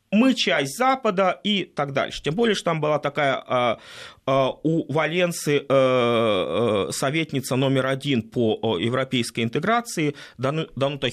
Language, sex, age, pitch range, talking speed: Russian, male, 30-49, 135-210 Hz, 115 wpm